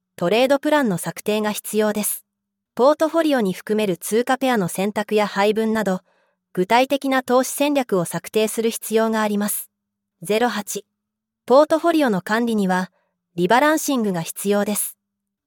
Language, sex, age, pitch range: Japanese, female, 30-49, 190-245 Hz